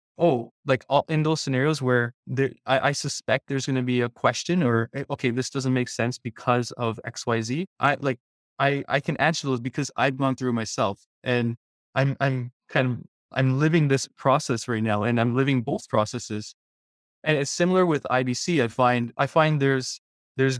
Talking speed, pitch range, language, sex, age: 200 wpm, 125-140 Hz, English, male, 20-39